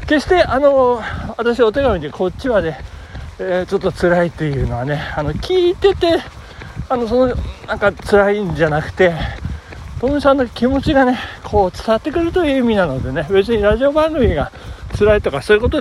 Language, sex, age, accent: Japanese, male, 60-79, native